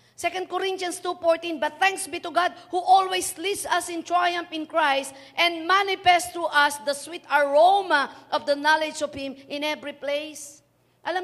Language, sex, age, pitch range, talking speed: Filipino, female, 50-69, 275-365 Hz, 170 wpm